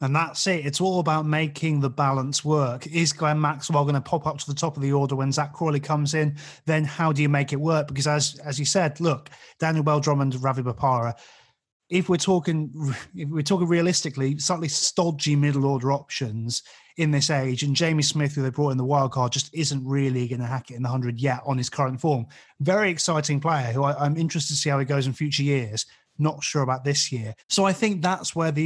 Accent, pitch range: British, 140-160 Hz